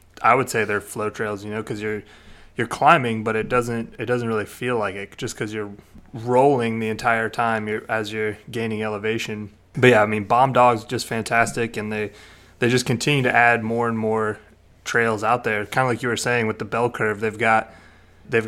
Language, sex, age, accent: English, male, 20-39, American